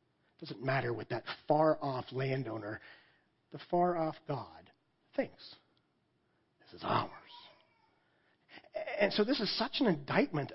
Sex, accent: male, American